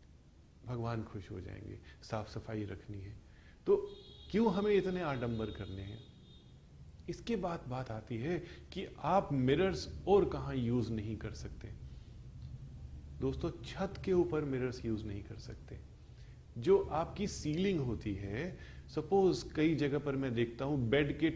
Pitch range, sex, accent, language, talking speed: 110-150 Hz, male, native, Hindi, 145 wpm